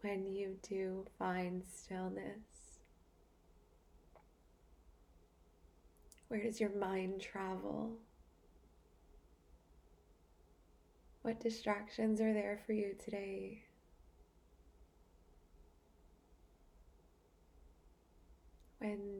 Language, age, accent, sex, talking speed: English, 20-39, American, female, 55 wpm